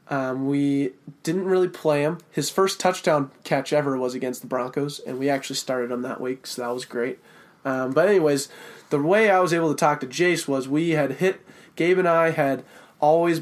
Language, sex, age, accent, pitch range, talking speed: English, male, 20-39, American, 135-155 Hz, 210 wpm